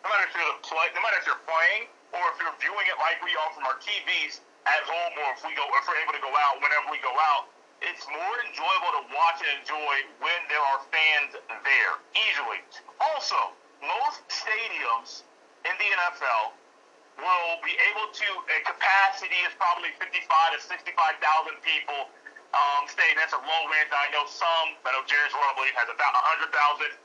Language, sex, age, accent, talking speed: English, male, 40-59, American, 185 wpm